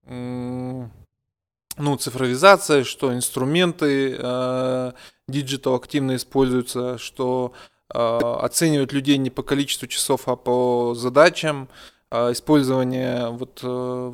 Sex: male